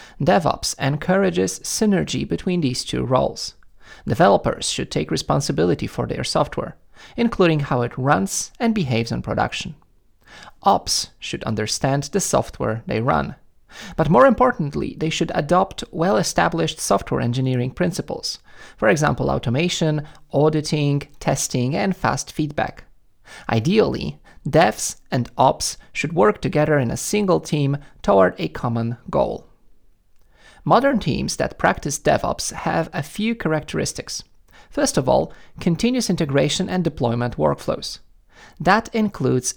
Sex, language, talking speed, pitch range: male, English, 125 wpm, 130-195 Hz